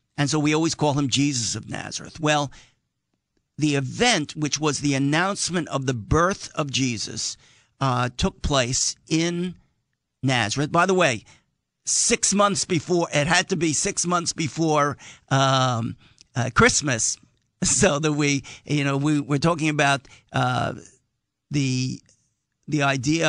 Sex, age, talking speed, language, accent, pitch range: male, 50-69, 140 wpm, English, American, 125-155 Hz